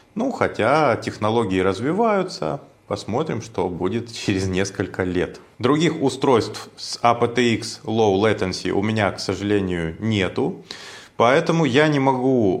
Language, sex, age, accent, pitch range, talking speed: Russian, male, 20-39, native, 100-140 Hz, 120 wpm